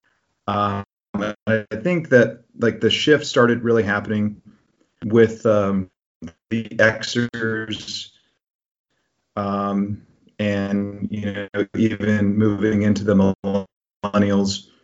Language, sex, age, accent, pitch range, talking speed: English, male, 30-49, American, 100-115 Hz, 95 wpm